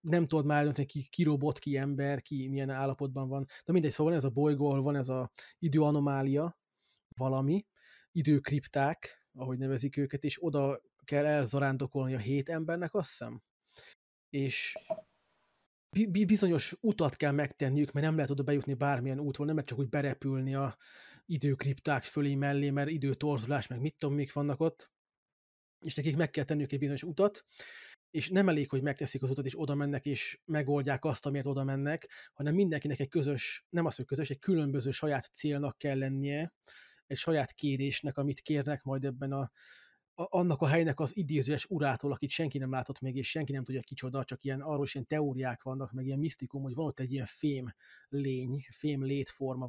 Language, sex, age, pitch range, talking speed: Hungarian, male, 20-39, 135-155 Hz, 180 wpm